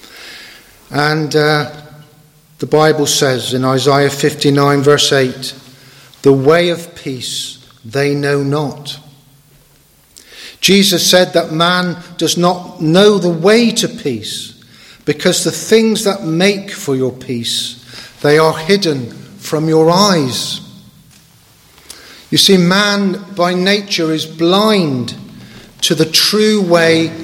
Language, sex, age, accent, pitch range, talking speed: English, male, 50-69, British, 140-175 Hz, 115 wpm